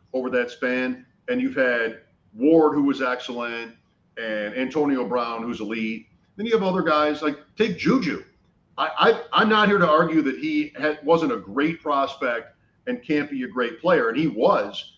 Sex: male